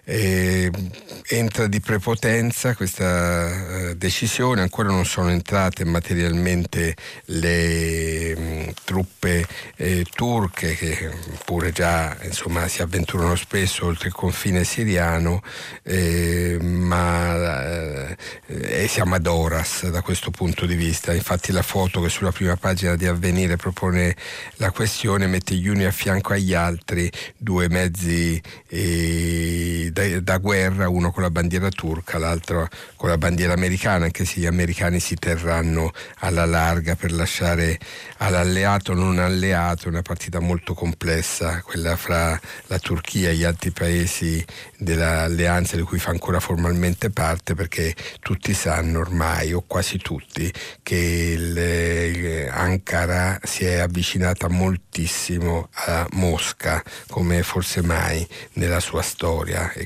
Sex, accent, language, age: male, native, Italian, 50-69